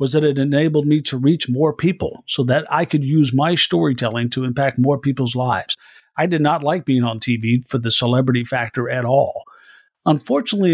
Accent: American